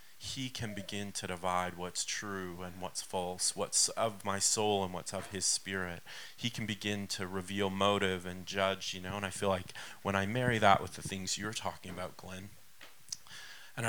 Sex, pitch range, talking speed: male, 95-110 Hz, 195 wpm